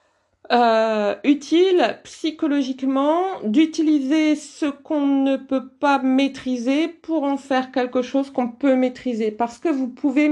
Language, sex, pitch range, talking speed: French, female, 215-275 Hz, 130 wpm